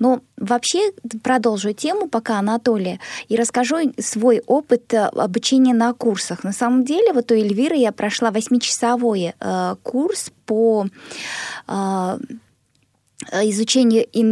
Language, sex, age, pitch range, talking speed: Russian, female, 20-39, 215-265 Hz, 110 wpm